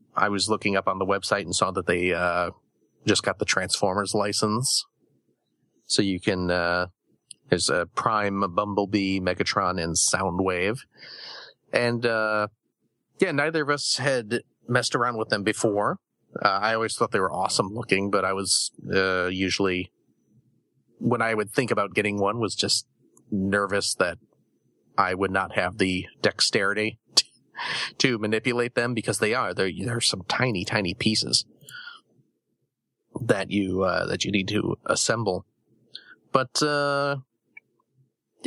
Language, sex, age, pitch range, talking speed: English, male, 40-59, 100-130 Hz, 145 wpm